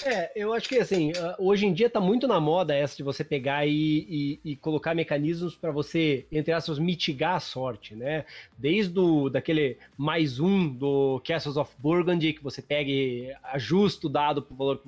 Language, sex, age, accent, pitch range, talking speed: Portuguese, male, 20-39, Brazilian, 150-225 Hz, 195 wpm